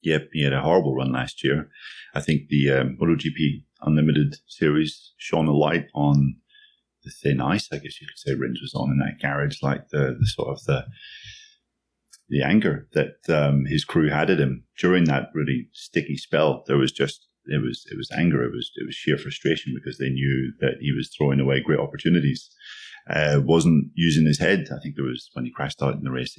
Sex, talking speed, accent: male, 210 wpm, British